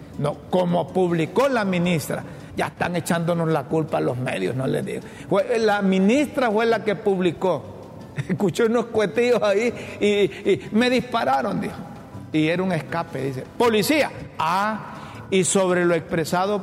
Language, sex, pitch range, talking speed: Spanish, male, 165-195 Hz, 150 wpm